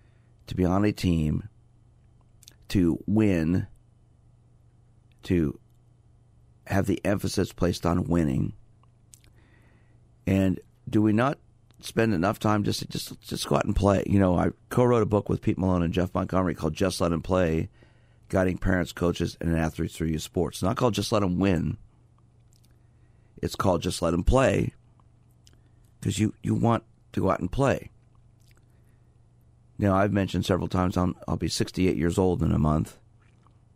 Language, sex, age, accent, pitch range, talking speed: English, male, 50-69, American, 90-115 Hz, 160 wpm